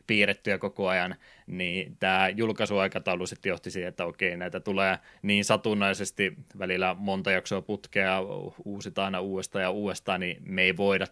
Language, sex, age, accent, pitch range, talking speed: Finnish, male, 20-39, native, 90-100 Hz, 150 wpm